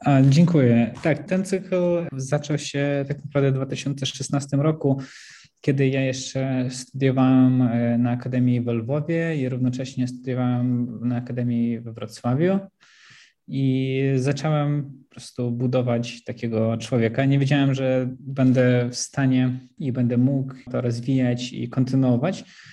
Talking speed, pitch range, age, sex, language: 120 wpm, 125-150 Hz, 20-39, male, Polish